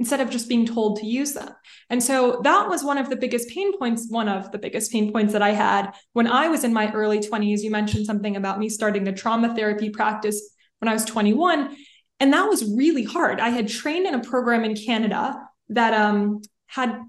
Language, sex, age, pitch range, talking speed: English, female, 20-39, 210-250 Hz, 225 wpm